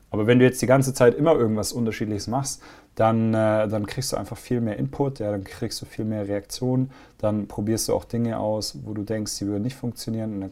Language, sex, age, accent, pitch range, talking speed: German, male, 30-49, German, 100-120 Hz, 240 wpm